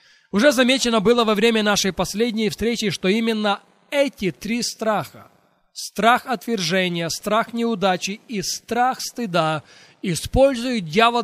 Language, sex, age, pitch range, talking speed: Russian, male, 20-39, 180-230 Hz, 115 wpm